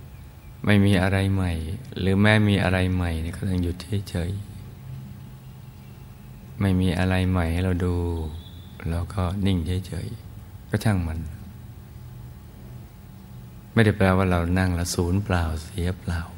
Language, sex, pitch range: Thai, male, 85-100 Hz